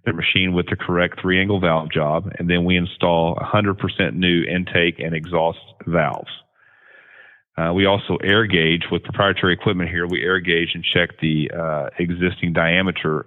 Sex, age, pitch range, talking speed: male, 40-59, 85-100 Hz, 165 wpm